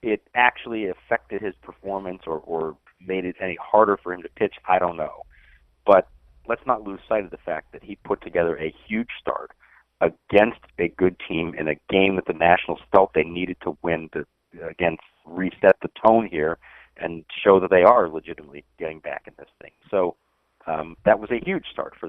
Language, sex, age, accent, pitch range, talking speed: English, male, 40-59, American, 80-110 Hz, 200 wpm